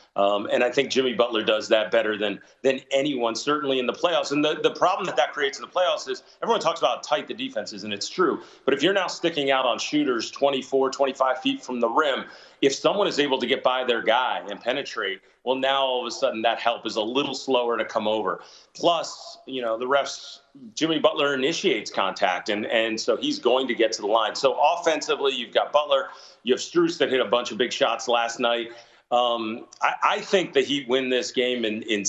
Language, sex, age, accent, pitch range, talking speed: English, male, 30-49, American, 105-140 Hz, 230 wpm